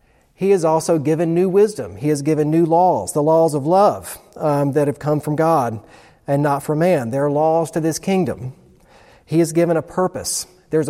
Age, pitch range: 40-59, 130-165 Hz